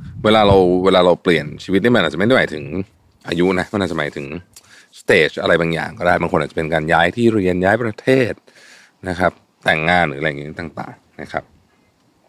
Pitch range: 80-100 Hz